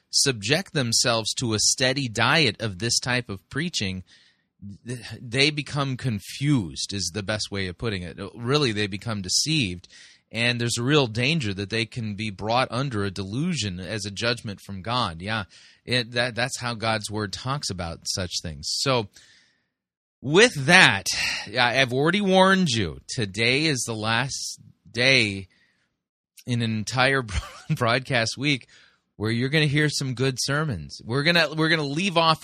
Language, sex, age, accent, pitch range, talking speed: English, male, 30-49, American, 105-145 Hz, 160 wpm